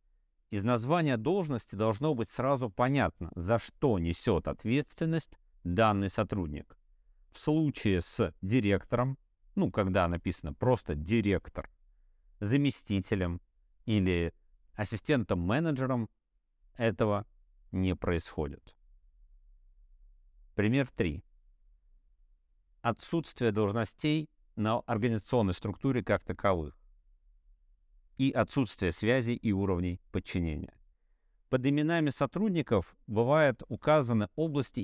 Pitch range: 85-120 Hz